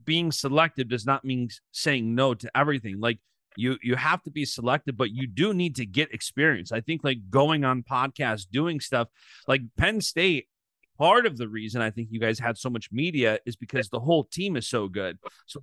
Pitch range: 115-155 Hz